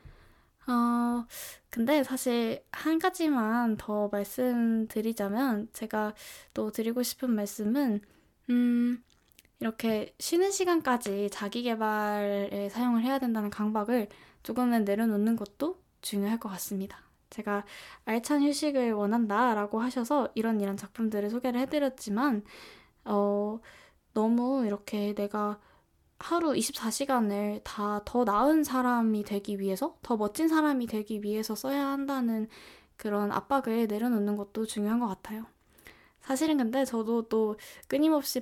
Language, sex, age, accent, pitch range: Korean, female, 10-29, native, 210-255 Hz